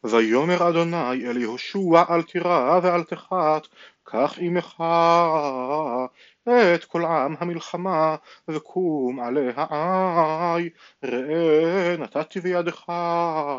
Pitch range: 140-175 Hz